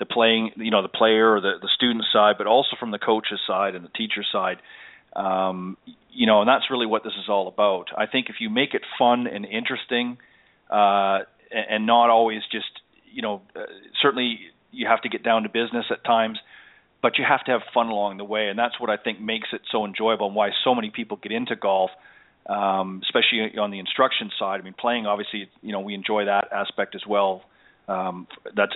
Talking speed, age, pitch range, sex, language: 220 wpm, 40-59, 105-120 Hz, male, English